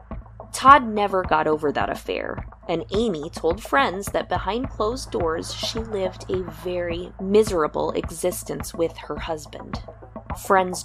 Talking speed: 135 wpm